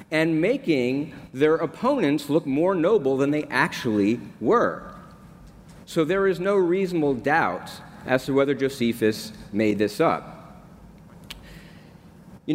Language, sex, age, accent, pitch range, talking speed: English, male, 40-59, American, 135-180 Hz, 120 wpm